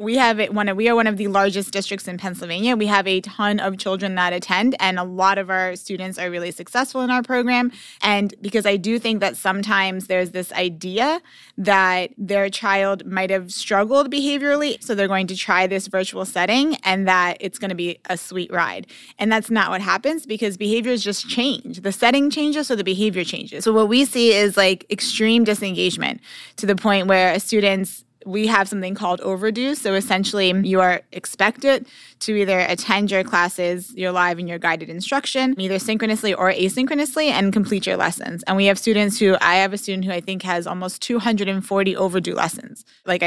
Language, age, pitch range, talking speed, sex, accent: English, 20-39, 185-225 Hz, 200 wpm, female, American